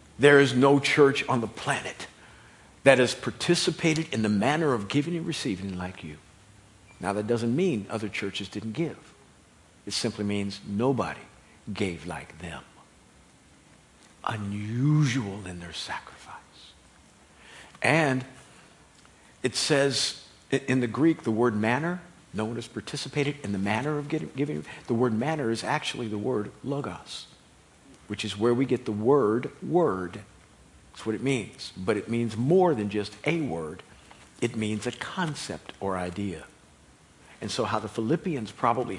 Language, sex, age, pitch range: English, male, 50-69, 105-150 Hz